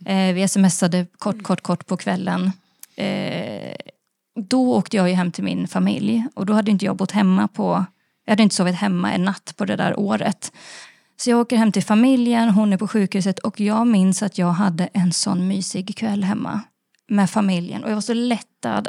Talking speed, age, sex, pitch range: 205 wpm, 20-39, female, 190-235 Hz